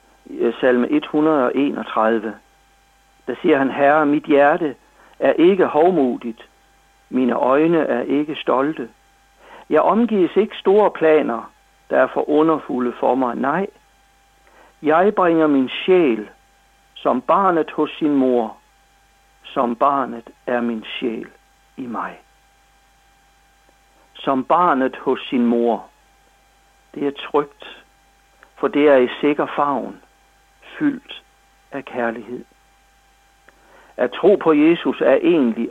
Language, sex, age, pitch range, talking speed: Danish, male, 60-79, 120-155 Hz, 115 wpm